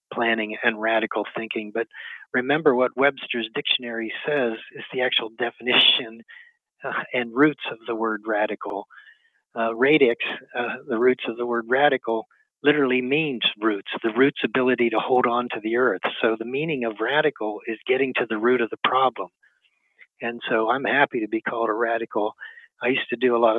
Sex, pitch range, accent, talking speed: male, 110-130 Hz, American, 180 wpm